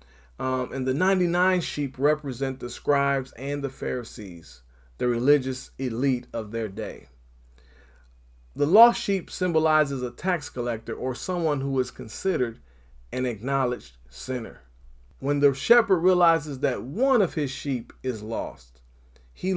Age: 40-59